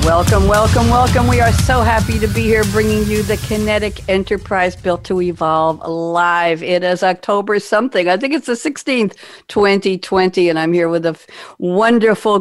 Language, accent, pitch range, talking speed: English, American, 160-205 Hz, 170 wpm